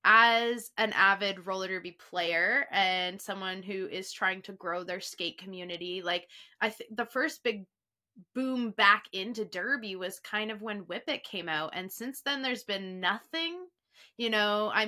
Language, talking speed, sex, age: English, 175 wpm, female, 20-39